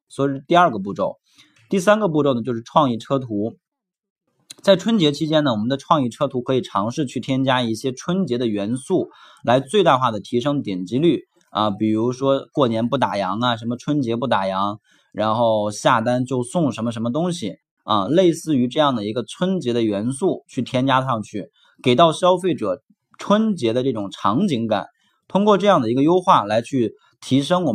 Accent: native